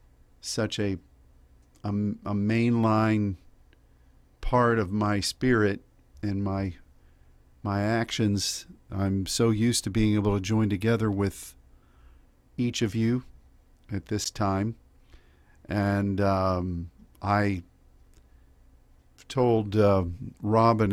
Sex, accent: male, American